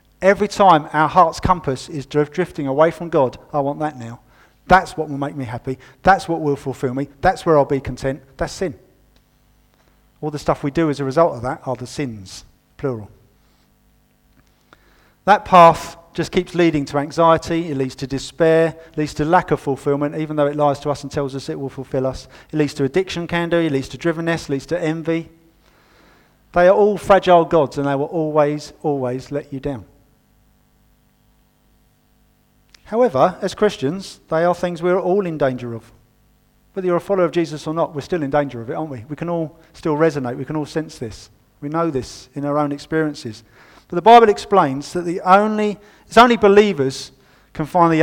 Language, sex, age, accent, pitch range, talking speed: English, male, 50-69, British, 135-170 Hz, 200 wpm